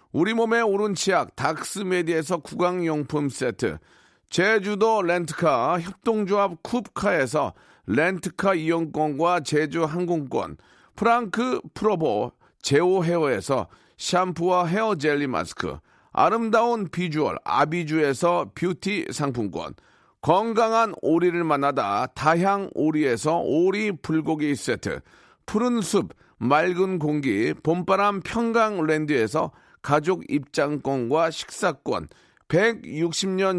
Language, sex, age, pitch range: Korean, male, 40-59, 160-210 Hz